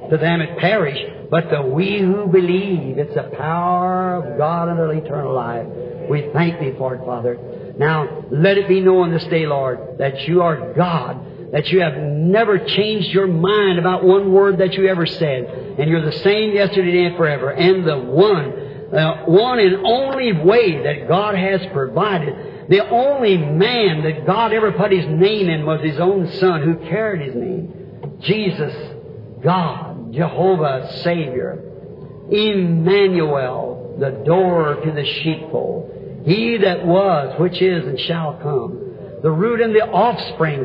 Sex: male